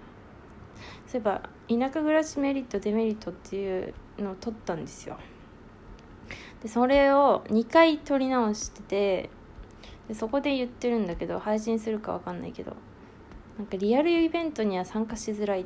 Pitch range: 180-240 Hz